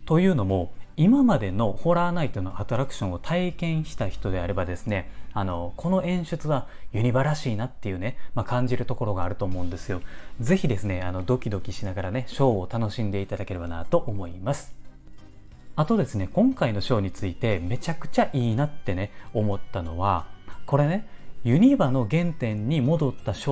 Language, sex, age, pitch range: Japanese, male, 30-49, 95-135 Hz